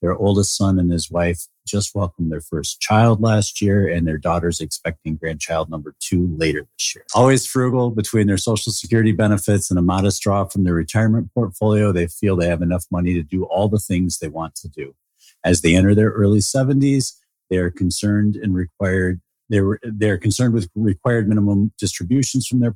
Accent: American